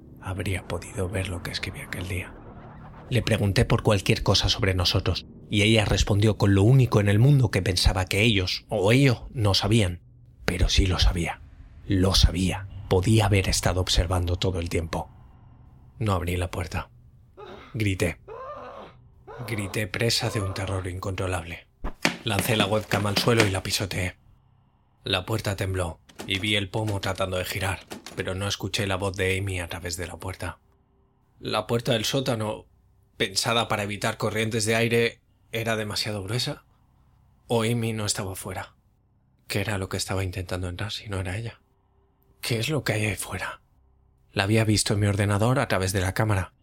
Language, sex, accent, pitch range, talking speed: Spanish, male, Spanish, 95-115 Hz, 170 wpm